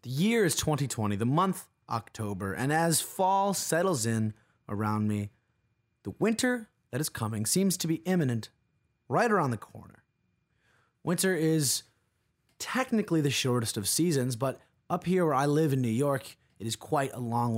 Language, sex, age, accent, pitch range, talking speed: English, male, 20-39, American, 110-160 Hz, 165 wpm